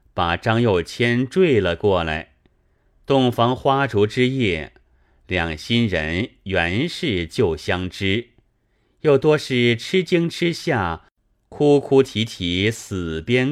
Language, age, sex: Chinese, 30-49, male